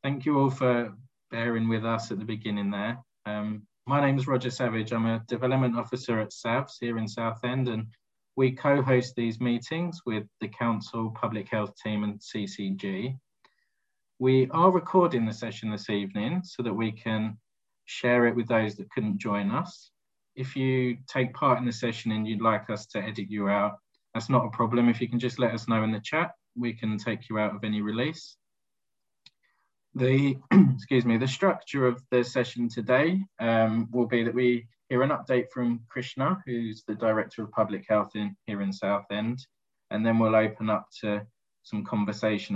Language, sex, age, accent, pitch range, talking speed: English, male, 20-39, British, 110-130 Hz, 185 wpm